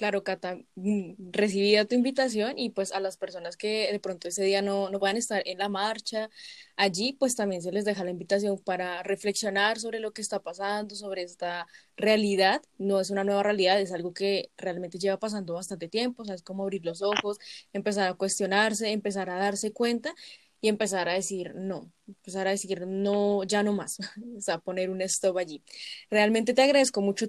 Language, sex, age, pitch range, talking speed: Spanish, female, 10-29, 195-225 Hz, 200 wpm